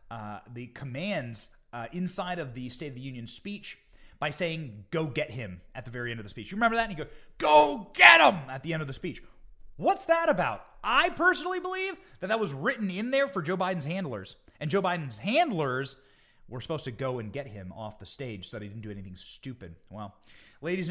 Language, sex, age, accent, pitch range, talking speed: English, male, 30-49, American, 130-195 Hz, 225 wpm